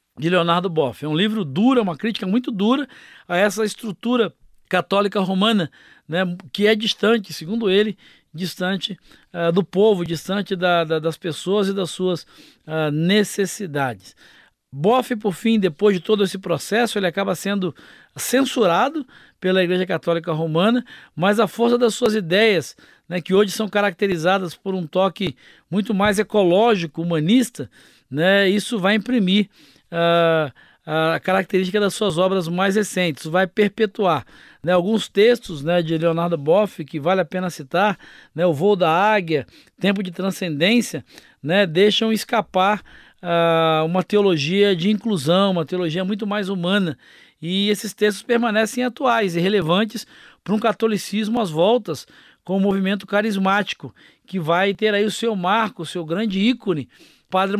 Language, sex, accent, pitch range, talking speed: Portuguese, male, Brazilian, 170-210 Hz, 150 wpm